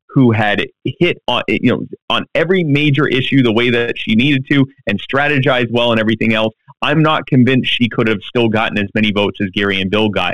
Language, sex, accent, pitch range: English, male, American, 115-145 Hz